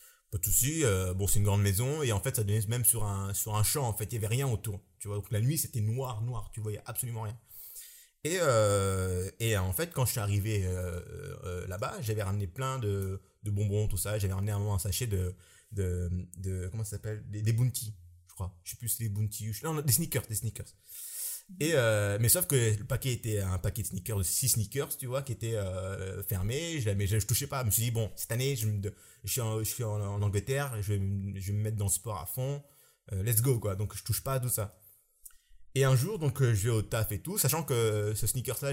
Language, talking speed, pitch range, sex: French, 265 wpm, 100-125 Hz, male